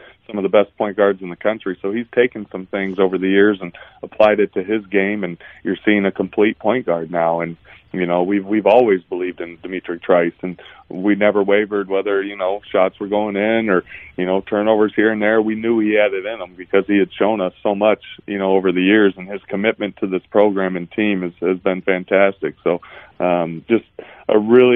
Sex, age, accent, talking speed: male, 20-39, American, 230 wpm